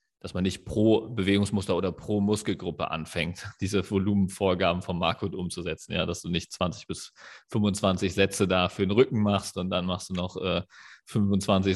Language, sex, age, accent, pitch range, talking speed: German, male, 30-49, German, 90-110 Hz, 175 wpm